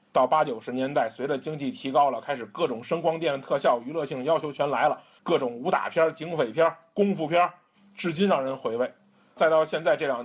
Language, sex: Chinese, male